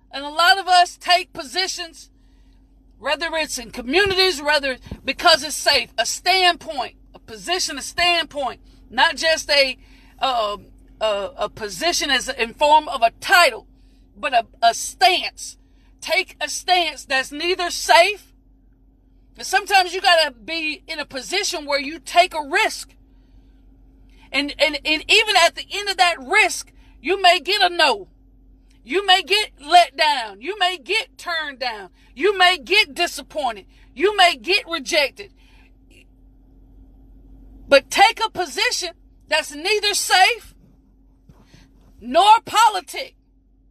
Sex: female